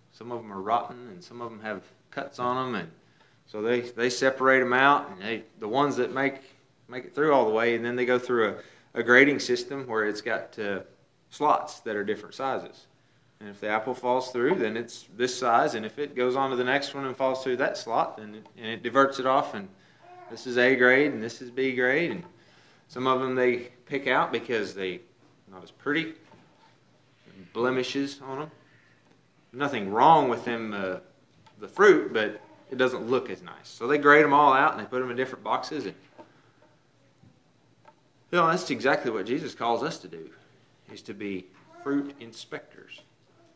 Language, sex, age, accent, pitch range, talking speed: English, male, 20-39, American, 120-140 Hz, 200 wpm